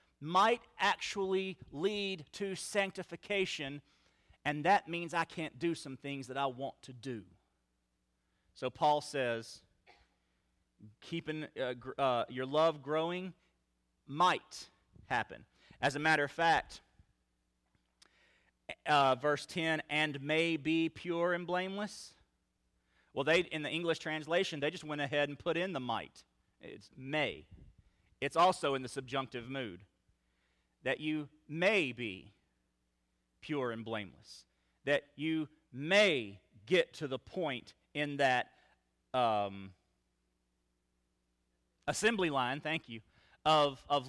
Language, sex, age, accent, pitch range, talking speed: English, male, 40-59, American, 115-170 Hz, 120 wpm